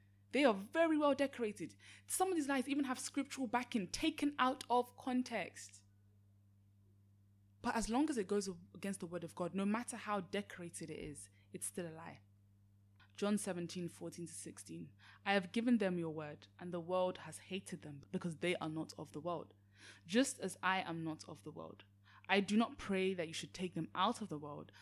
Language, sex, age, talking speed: English, female, 20-39, 200 wpm